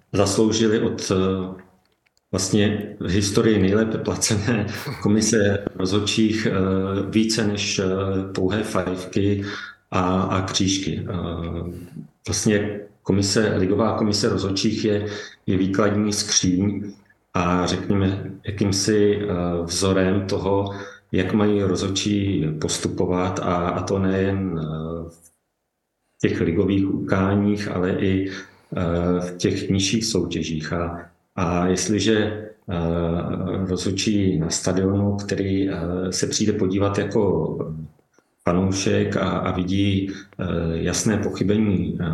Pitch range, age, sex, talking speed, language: 90-105 Hz, 40-59, male, 95 wpm, Czech